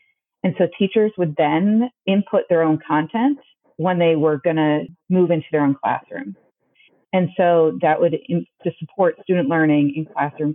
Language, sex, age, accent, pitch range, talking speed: English, female, 40-59, American, 150-190 Hz, 170 wpm